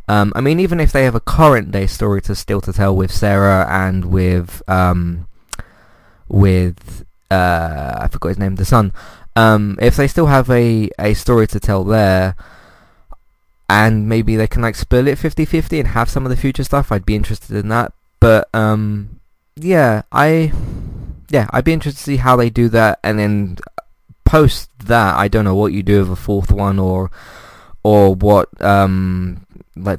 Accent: British